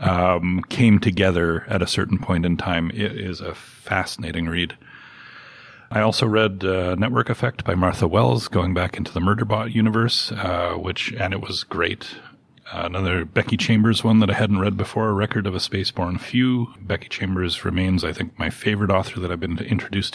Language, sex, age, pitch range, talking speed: English, male, 40-59, 90-110 Hz, 190 wpm